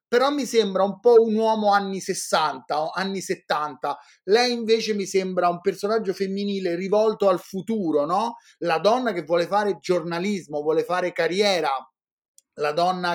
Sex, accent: male, native